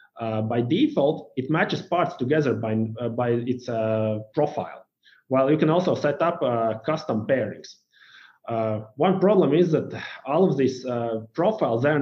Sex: male